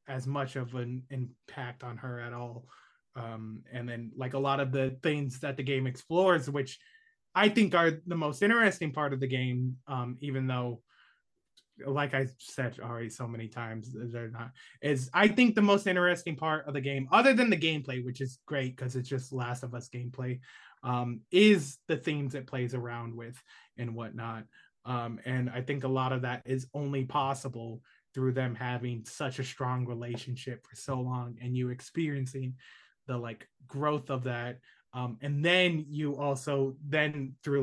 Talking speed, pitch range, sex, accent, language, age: 185 wpm, 125-140 Hz, male, American, English, 20-39